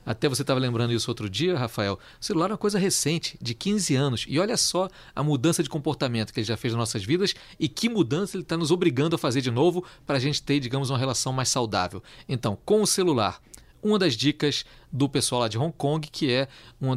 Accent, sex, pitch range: Brazilian, male, 120-160 Hz